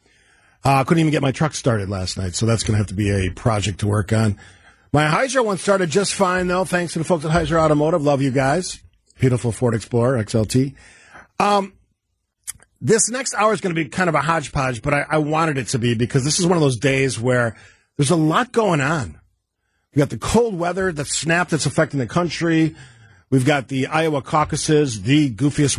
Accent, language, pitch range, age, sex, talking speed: American, English, 115-155 Hz, 50-69, male, 215 wpm